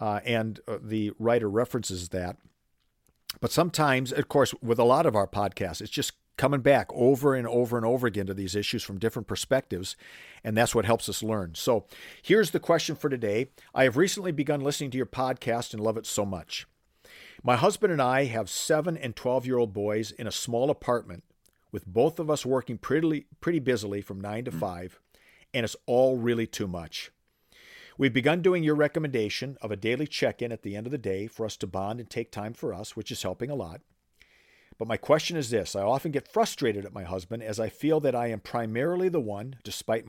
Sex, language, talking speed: male, English, 215 wpm